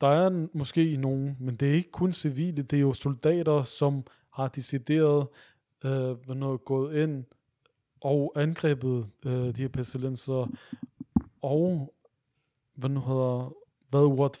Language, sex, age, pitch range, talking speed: Danish, male, 20-39, 130-155 Hz, 140 wpm